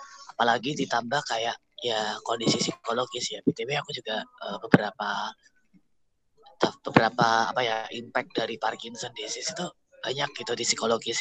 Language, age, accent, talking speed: Indonesian, 20-39, native, 130 wpm